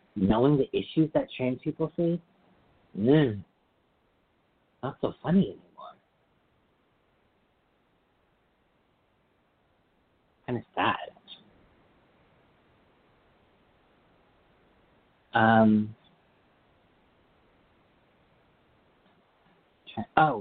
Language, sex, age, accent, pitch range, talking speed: English, male, 50-69, American, 110-155 Hz, 50 wpm